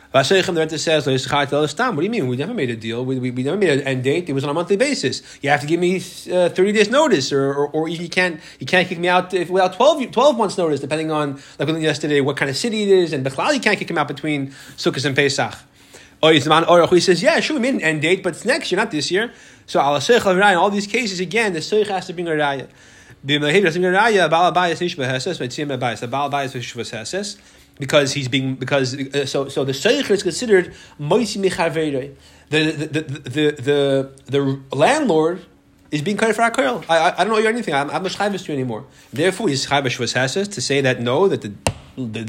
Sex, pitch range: male, 135-185 Hz